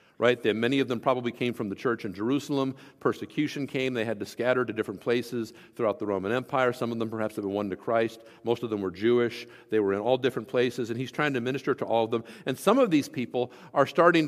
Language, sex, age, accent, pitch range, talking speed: English, male, 50-69, American, 125-180 Hz, 250 wpm